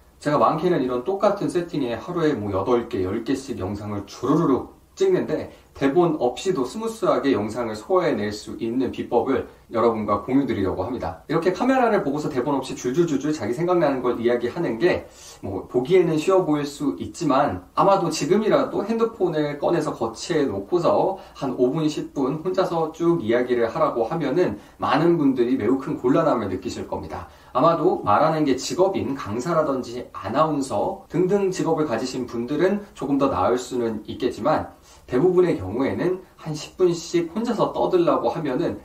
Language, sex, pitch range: Korean, male, 125-180 Hz